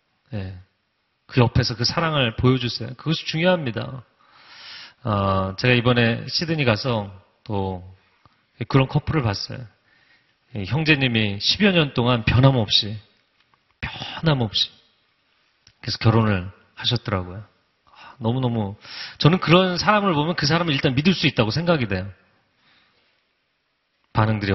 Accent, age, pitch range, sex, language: native, 40-59, 110-145 Hz, male, Korean